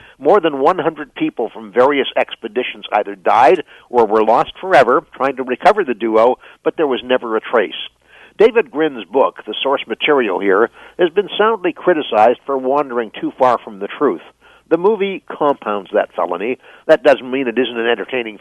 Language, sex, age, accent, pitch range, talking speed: English, male, 60-79, American, 120-155 Hz, 175 wpm